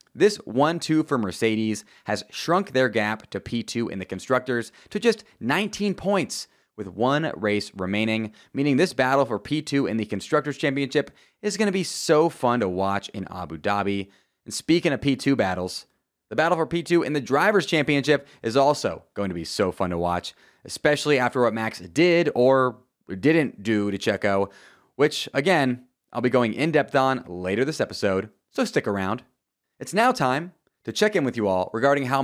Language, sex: English, male